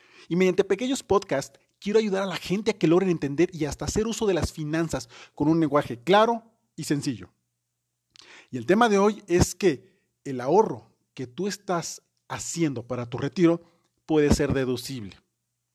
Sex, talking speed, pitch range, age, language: male, 170 wpm, 135-180 Hz, 40-59, Spanish